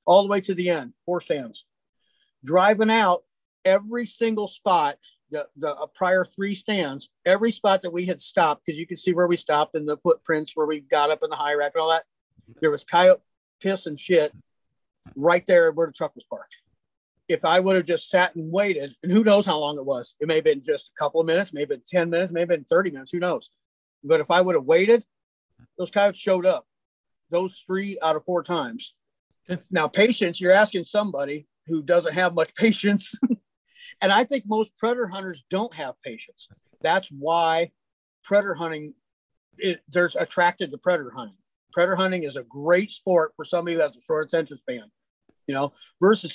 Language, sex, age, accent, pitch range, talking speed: English, male, 40-59, American, 160-200 Hz, 195 wpm